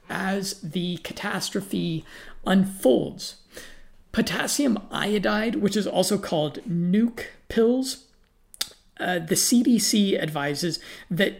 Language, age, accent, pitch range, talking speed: English, 50-69, American, 170-215 Hz, 90 wpm